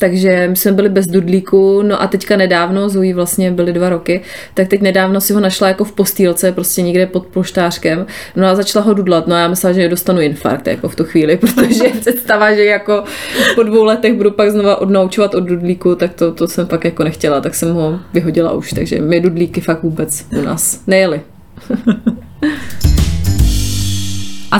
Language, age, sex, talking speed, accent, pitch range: Czech, 20-39, female, 190 wpm, native, 170-200 Hz